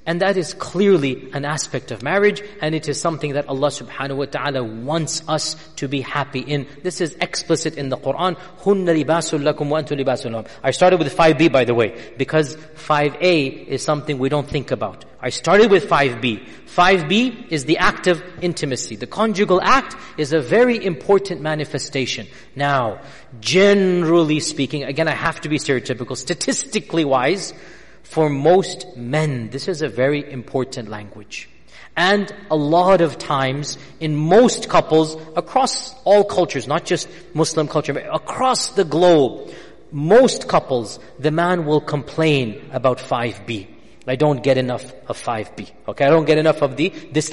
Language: English